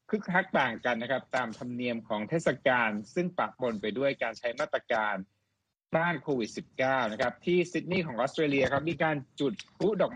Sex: male